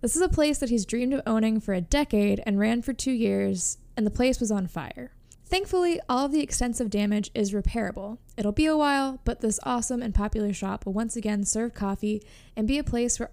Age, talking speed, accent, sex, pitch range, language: 10-29, 230 wpm, American, female, 205-255 Hz, English